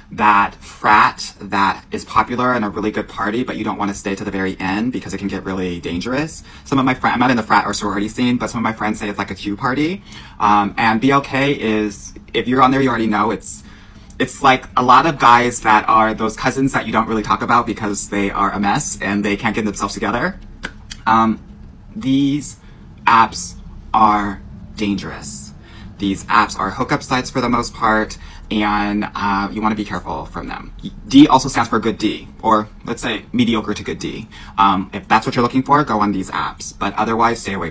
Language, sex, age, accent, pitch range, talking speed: English, male, 20-39, American, 100-115 Hz, 225 wpm